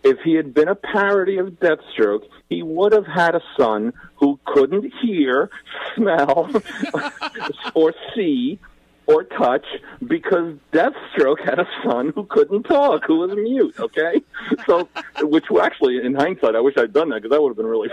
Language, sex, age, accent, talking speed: English, male, 50-69, American, 165 wpm